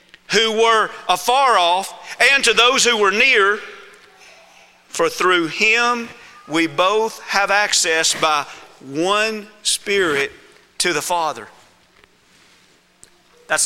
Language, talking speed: English, 105 wpm